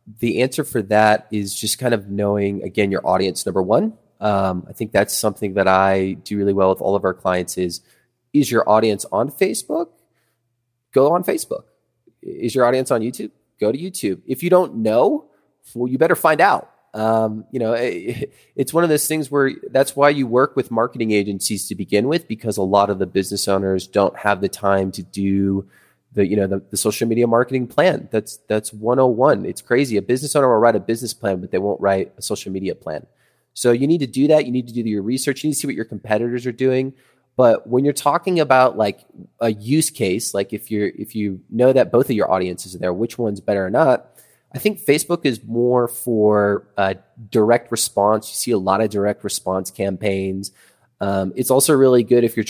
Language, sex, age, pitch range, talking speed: English, male, 20-39, 100-125 Hz, 220 wpm